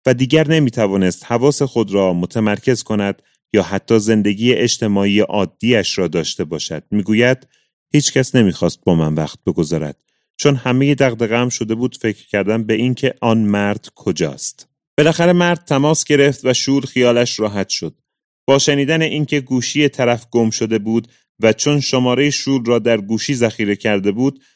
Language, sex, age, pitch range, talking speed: Persian, male, 30-49, 110-135 Hz, 155 wpm